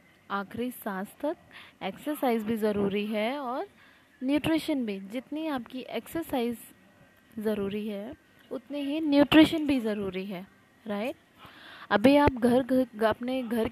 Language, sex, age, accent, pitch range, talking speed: Hindi, female, 20-39, native, 215-275 Hz, 125 wpm